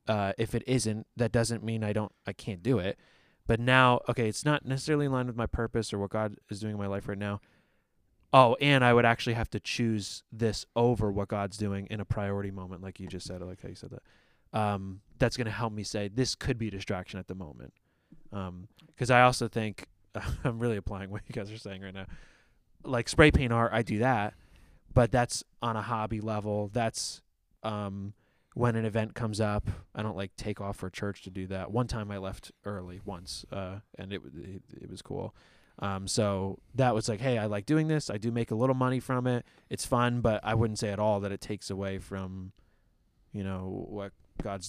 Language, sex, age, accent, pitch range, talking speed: English, male, 20-39, American, 100-120 Hz, 225 wpm